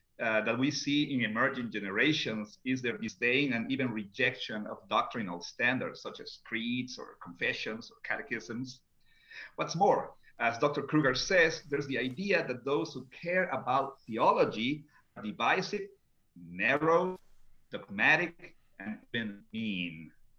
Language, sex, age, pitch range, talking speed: English, male, 50-69, 115-160 Hz, 130 wpm